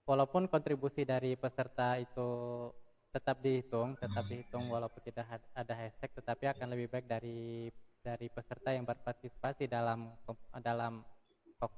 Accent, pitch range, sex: native, 115-135 Hz, male